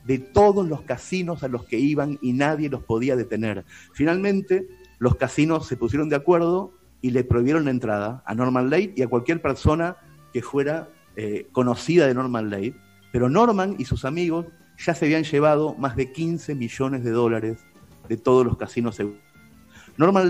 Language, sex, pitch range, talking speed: Italian, male, 115-165 Hz, 175 wpm